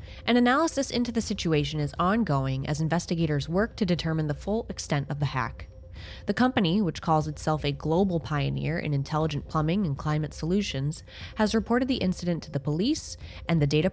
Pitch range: 145-210 Hz